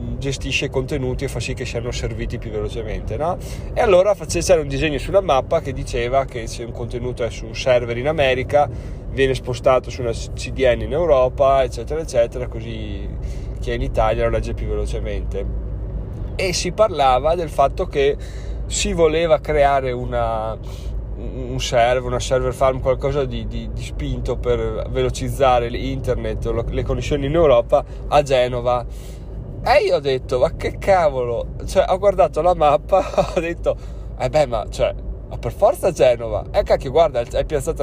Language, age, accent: Italian, 30-49, native